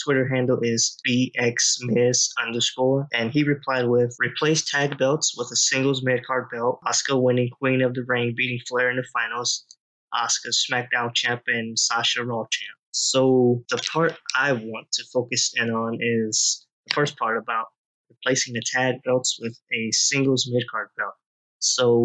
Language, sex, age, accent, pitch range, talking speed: English, male, 20-39, American, 115-130 Hz, 165 wpm